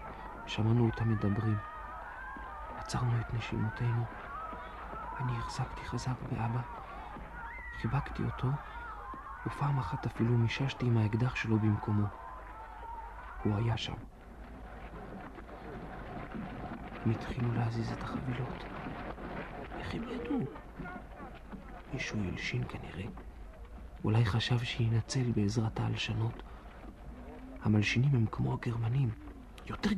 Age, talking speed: 40-59, 90 wpm